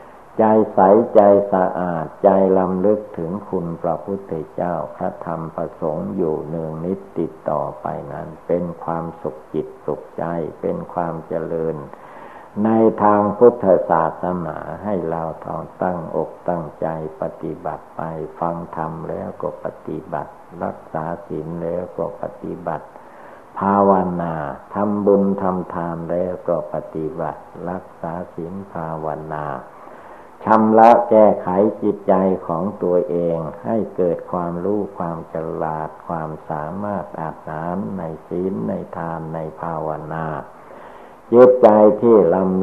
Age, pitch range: 60-79, 80-100 Hz